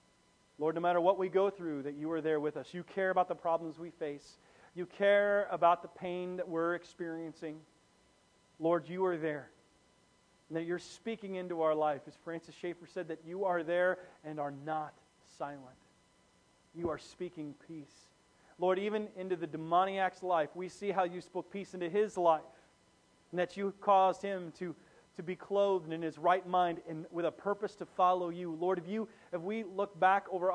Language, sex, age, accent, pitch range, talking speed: English, male, 40-59, American, 165-190 Hz, 195 wpm